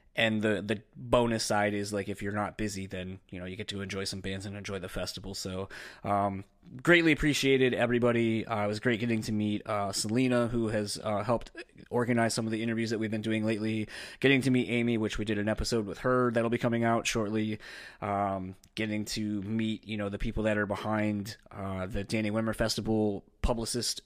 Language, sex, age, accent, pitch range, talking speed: English, male, 20-39, American, 105-120 Hz, 210 wpm